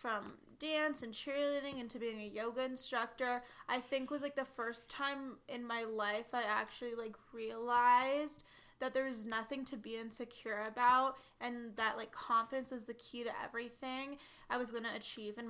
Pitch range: 230-265 Hz